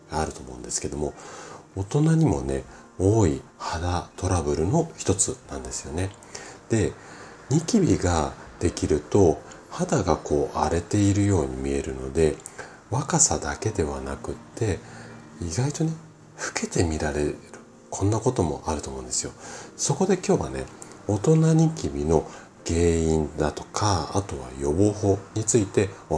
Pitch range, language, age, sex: 75-105 Hz, Japanese, 40-59, male